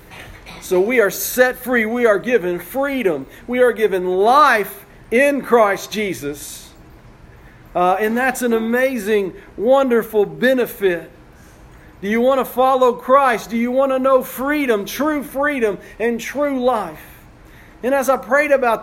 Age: 40-59